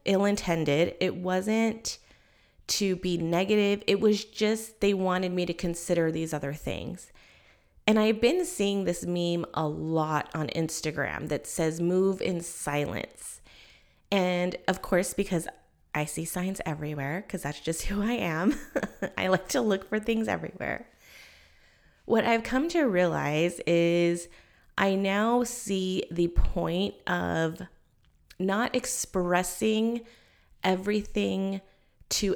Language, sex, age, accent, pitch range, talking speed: English, female, 20-39, American, 165-215 Hz, 130 wpm